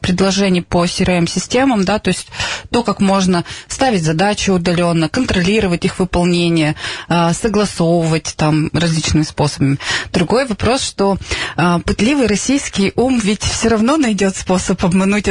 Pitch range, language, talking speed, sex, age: 175-210 Hz, Russian, 120 wpm, female, 20-39